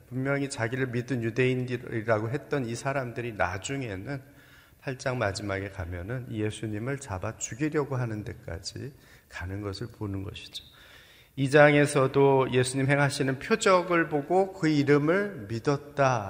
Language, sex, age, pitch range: Korean, male, 40-59, 110-140 Hz